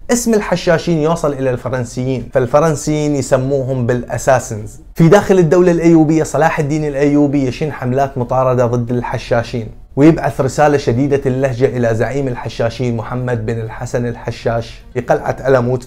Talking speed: 130 wpm